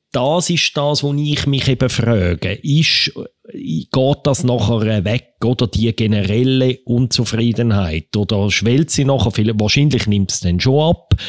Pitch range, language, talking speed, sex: 100-130 Hz, German, 150 wpm, male